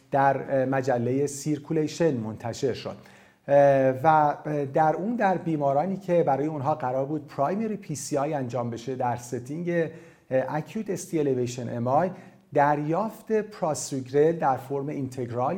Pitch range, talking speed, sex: 130-175 Hz, 125 wpm, male